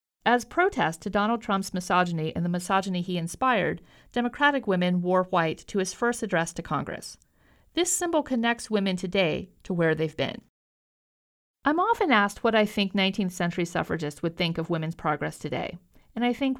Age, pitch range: 50-69, 175-230 Hz